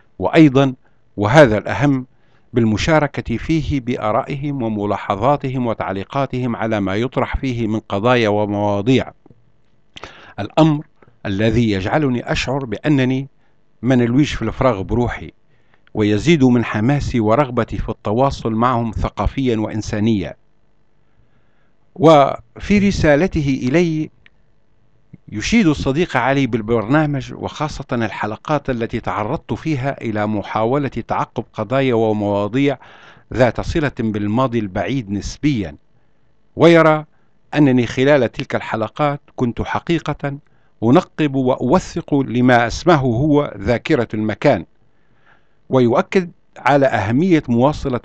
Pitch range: 110-145 Hz